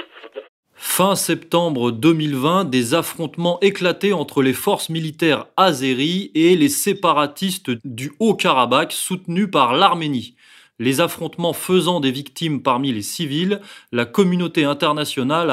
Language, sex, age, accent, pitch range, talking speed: French, male, 30-49, French, 130-175 Hz, 115 wpm